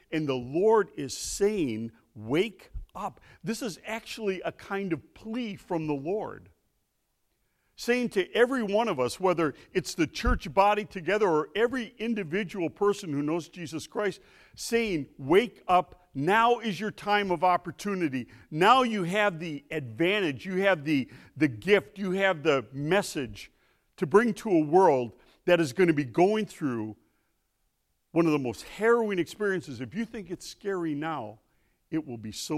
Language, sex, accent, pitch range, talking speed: English, male, American, 120-195 Hz, 160 wpm